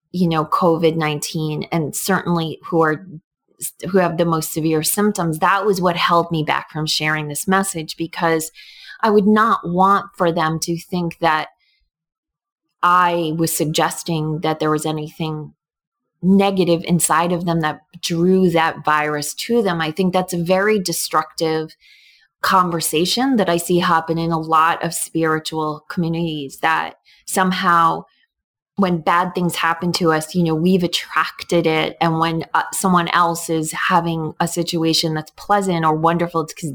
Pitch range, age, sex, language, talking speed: 160-180 Hz, 20-39, female, English, 155 wpm